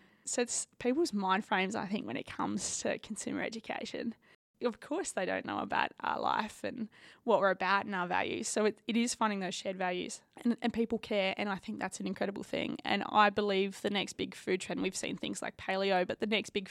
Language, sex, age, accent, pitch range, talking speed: English, female, 20-39, Australian, 195-240 Hz, 230 wpm